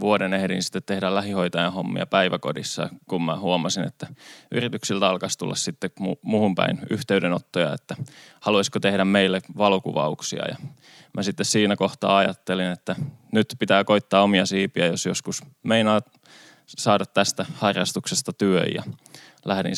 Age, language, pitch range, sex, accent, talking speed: 20-39, Finnish, 95-100 Hz, male, native, 135 wpm